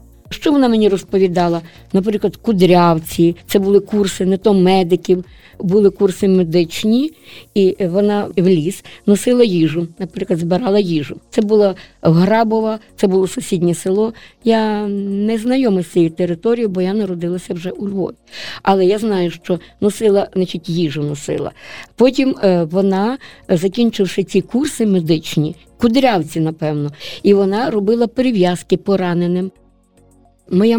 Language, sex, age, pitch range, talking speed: Ukrainian, female, 20-39, 185-255 Hz, 125 wpm